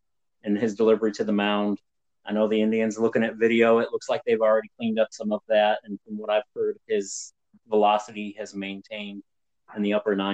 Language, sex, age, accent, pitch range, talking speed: English, male, 30-49, American, 105-115 Hz, 210 wpm